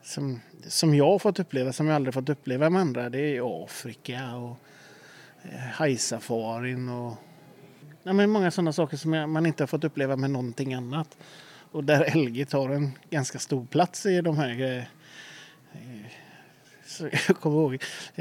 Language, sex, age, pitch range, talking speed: Swedish, male, 30-49, 140-180 Hz, 160 wpm